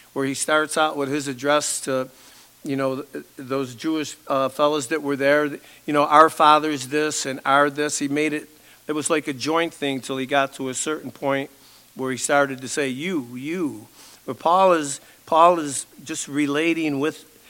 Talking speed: 190 wpm